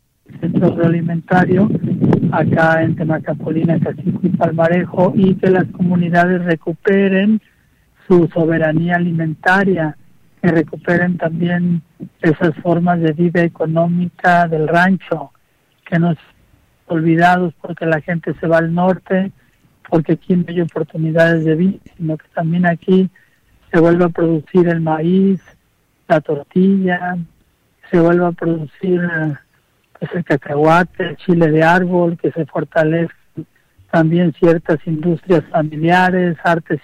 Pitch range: 160-180 Hz